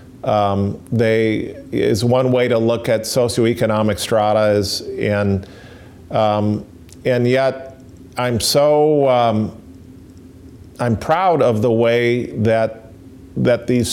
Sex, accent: male, American